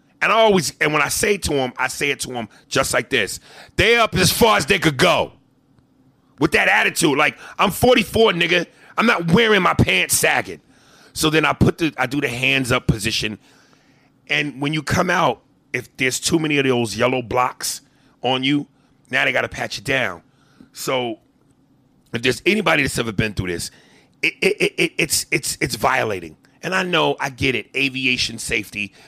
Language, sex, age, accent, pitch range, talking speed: English, male, 30-49, American, 115-150 Hz, 200 wpm